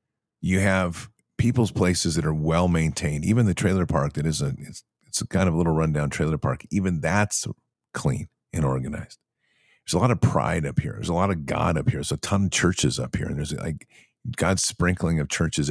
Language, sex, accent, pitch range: English, male, American, 80-100 Hz